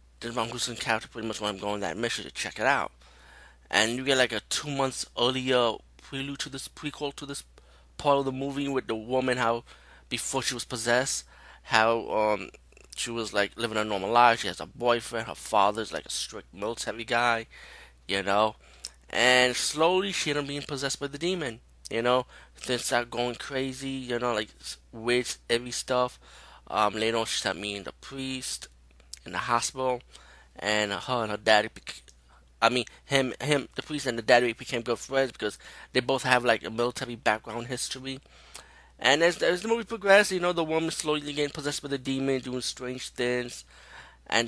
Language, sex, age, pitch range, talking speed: English, male, 20-39, 105-135 Hz, 190 wpm